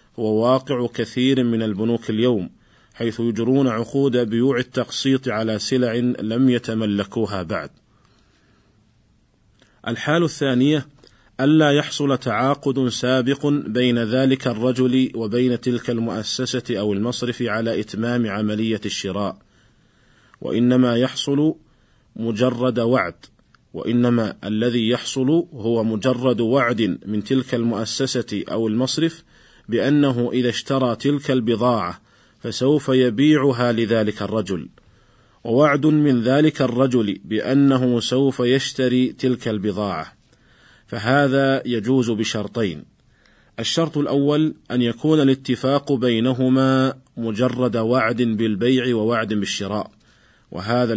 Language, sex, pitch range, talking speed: Arabic, male, 115-130 Hz, 95 wpm